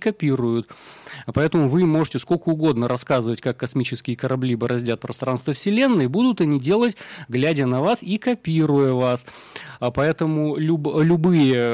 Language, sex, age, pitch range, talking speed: Russian, male, 30-49, 125-160 Hz, 125 wpm